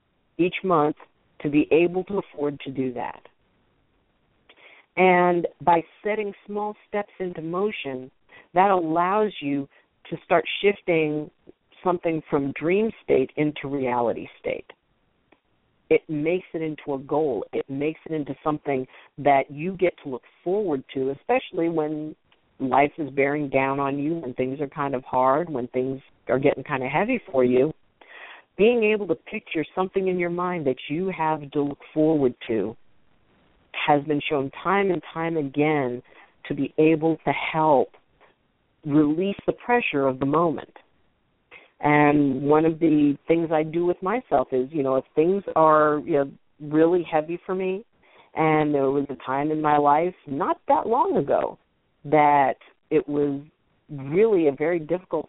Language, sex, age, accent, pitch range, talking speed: English, female, 50-69, American, 140-175 Hz, 155 wpm